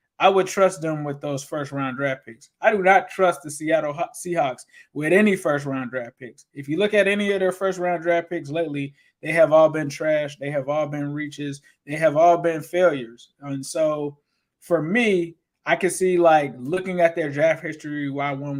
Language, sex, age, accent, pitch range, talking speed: English, male, 20-39, American, 140-170 Hz, 210 wpm